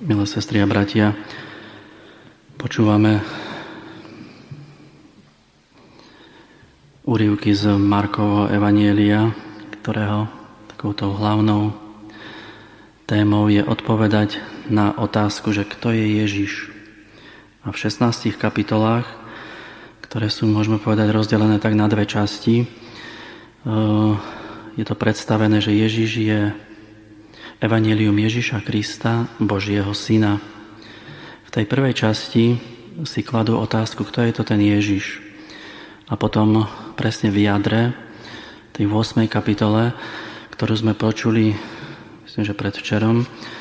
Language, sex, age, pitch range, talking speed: Slovak, male, 30-49, 105-110 Hz, 100 wpm